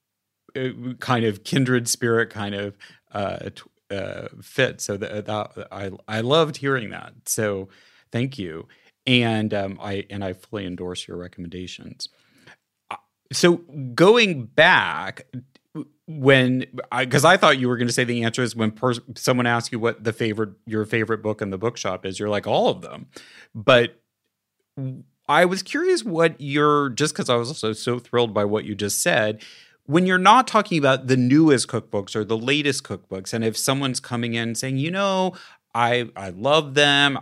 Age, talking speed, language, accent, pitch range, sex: 30-49, 175 wpm, English, American, 105-135 Hz, male